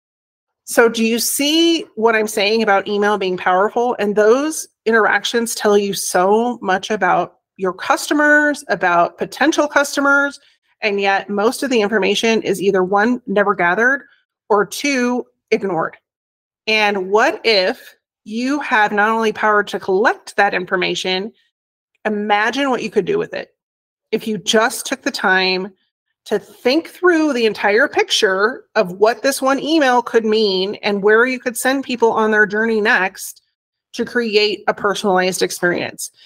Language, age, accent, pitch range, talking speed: English, 30-49, American, 205-260 Hz, 150 wpm